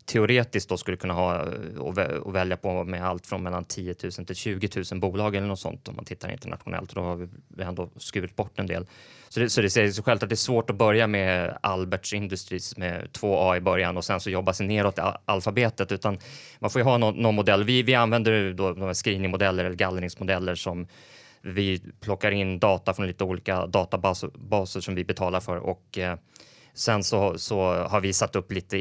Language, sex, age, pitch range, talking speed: Swedish, male, 20-39, 90-105 Hz, 210 wpm